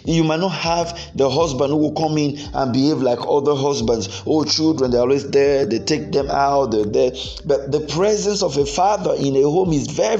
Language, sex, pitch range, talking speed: English, male, 125-160 Hz, 220 wpm